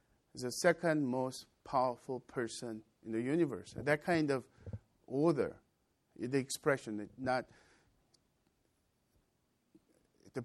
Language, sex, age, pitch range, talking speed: English, male, 50-69, 120-160 Hz, 90 wpm